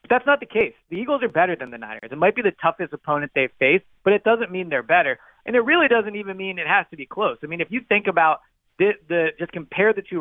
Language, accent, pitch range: English, American, 145-195 Hz